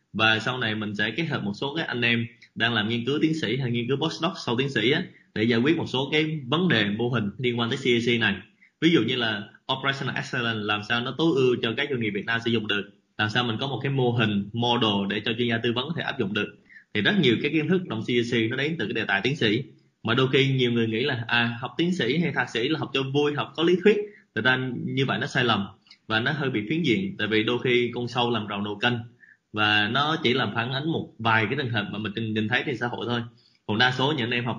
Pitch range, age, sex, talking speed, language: 110-135 Hz, 20-39, male, 290 wpm, Vietnamese